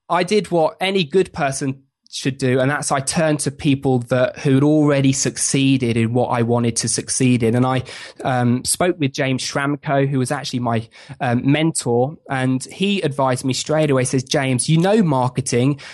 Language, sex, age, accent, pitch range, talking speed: English, male, 20-39, British, 130-160 Hz, 190 wpm